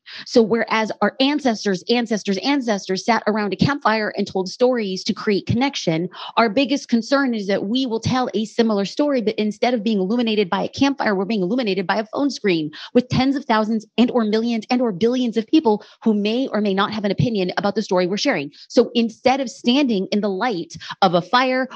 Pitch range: 195-255 Hz